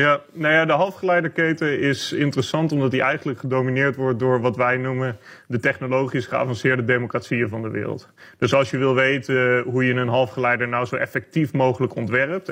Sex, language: male, Dutch